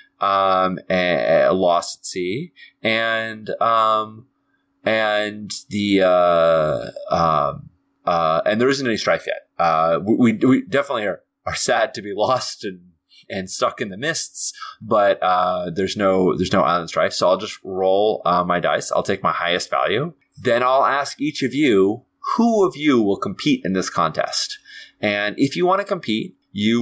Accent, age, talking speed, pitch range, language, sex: American, 30-49, 170 wpm, 95-130 Hz, English, male